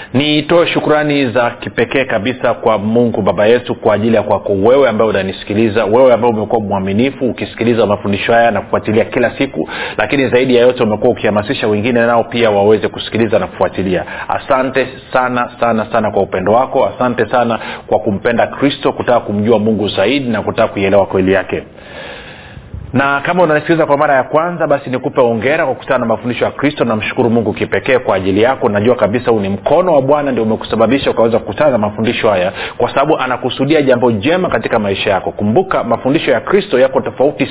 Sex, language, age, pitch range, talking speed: male, Swahili, 40-59, 110-135 Hz, 180 wpm